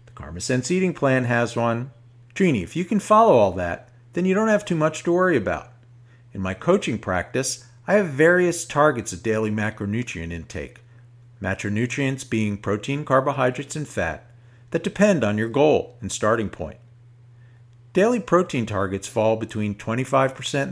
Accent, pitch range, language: American, 110-150 Hz, English